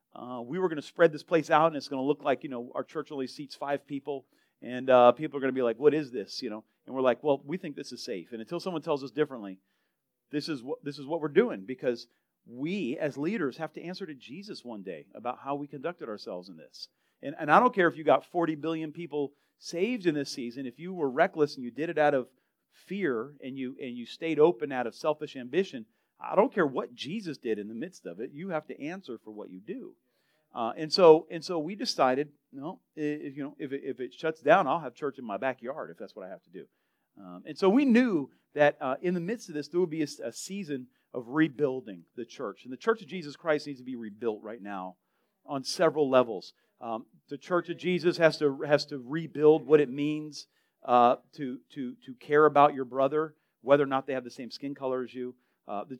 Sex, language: male, English